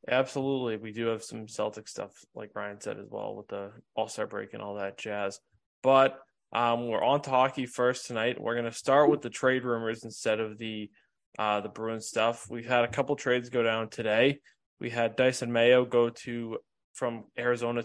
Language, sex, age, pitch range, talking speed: English, male, 20-39, 110-125 Hz, 200 wpm